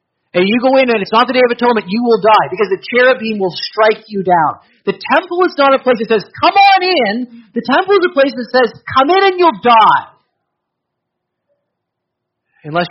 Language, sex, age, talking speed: English, male, 30-49, 210 wpm